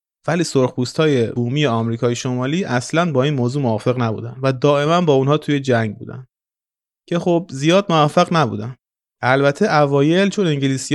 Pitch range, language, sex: 120-160 Hz, Persian, male